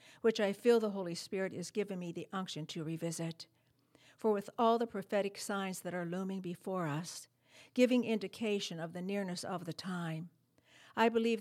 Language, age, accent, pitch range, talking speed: English, 60-79, American, 165-205 Hz, 180 wpm